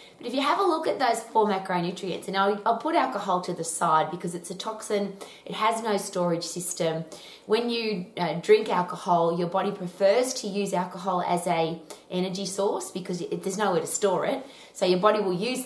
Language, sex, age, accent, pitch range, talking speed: English, female, 20-39, Australian, 160-205 Hz, 200 wpm